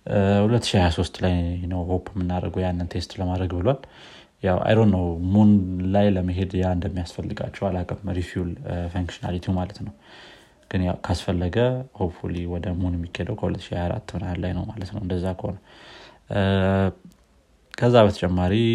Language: Amharic